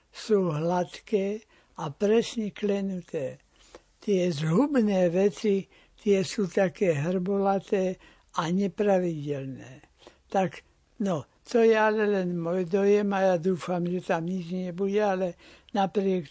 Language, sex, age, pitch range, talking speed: Slovak, male, 60-79, 175-205 Hz, 115 wpm